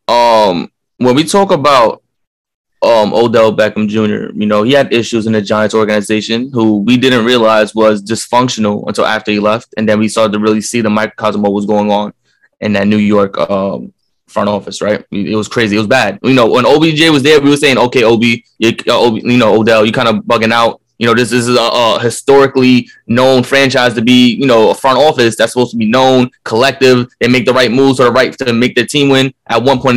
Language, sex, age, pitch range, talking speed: English, male, 20-39, 110-140 Hz, 235 wpm